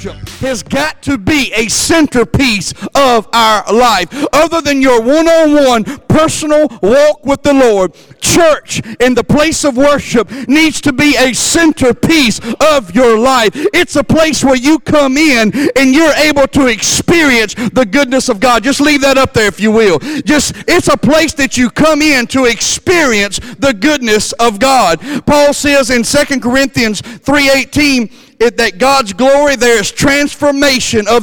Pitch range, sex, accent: 230-295 Hz, male, American